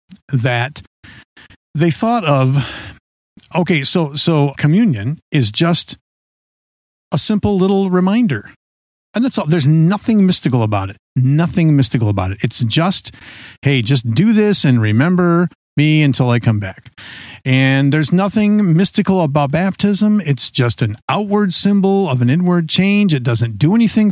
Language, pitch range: English, 125-180 Hz